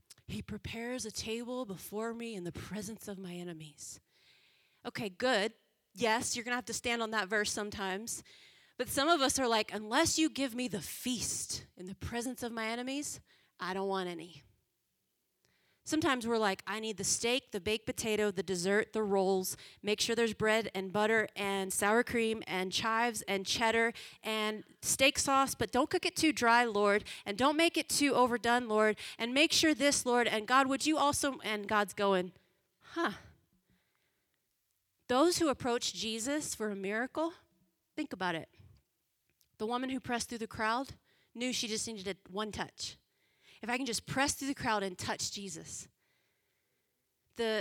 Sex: female